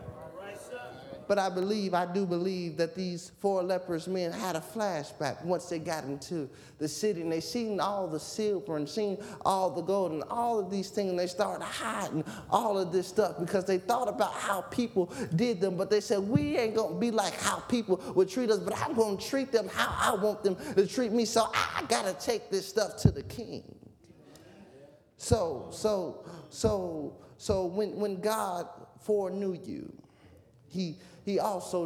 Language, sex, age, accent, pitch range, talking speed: English, male, 20-39, American, 150-200 Hz, 185 wpm